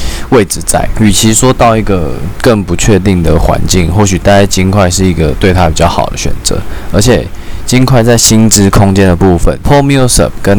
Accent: native